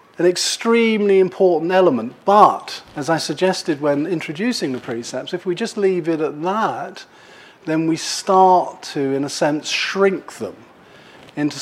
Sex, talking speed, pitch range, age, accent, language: male, 150 wpm, 135-175 Hz, 40-59, British, English